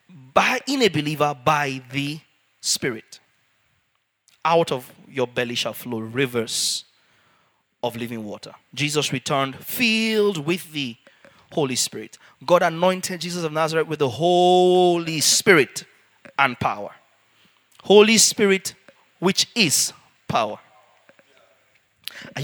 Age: 30-49